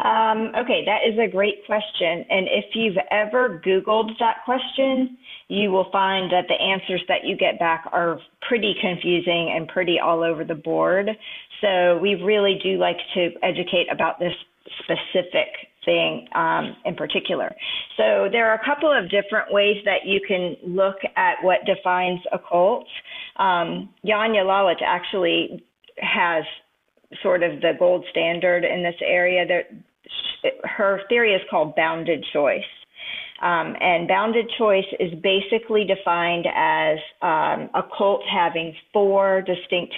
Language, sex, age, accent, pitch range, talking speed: English, female, 40-59, American, 165-205 Hz, 145 wpm